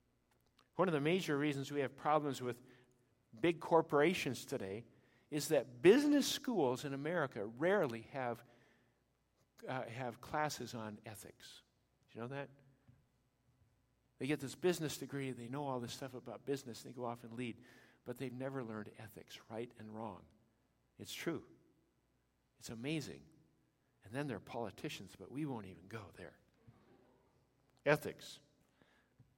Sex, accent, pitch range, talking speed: male, American, 125-160 Hz, 145 wpm